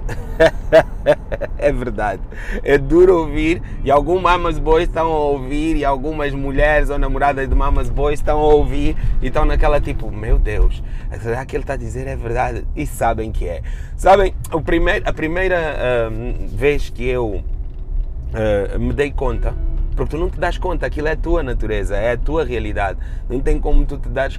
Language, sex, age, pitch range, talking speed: Portuguese, male, 20-39, 115-145 Hz, 185 wpm